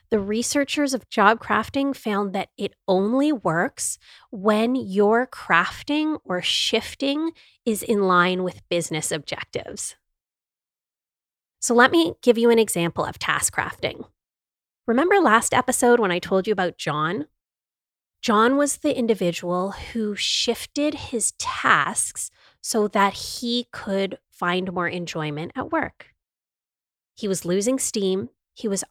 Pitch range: 175-240 Hz